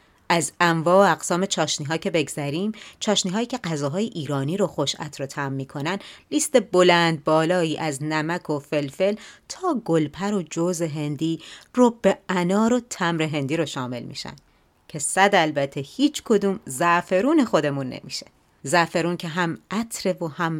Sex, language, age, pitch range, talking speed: female, Persian, 30-49, 150-200 Hz, 150 wpm